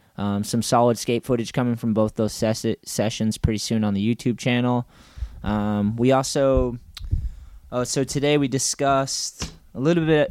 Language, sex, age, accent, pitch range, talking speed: English, male, 20-39, American, 105-120 Hz, 165 wpm